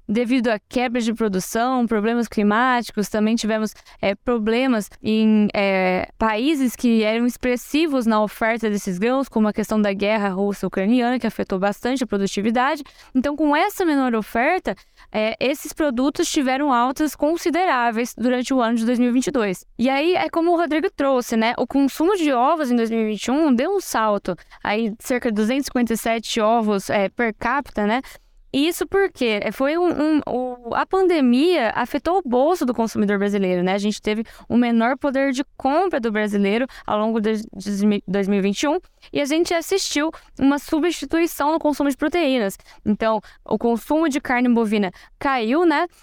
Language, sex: Portuguese, female